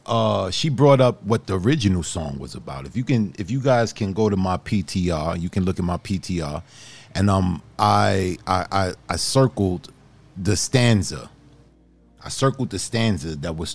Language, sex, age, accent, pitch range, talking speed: English, male, 40-59, American, 95-135 Hz, 185 wpm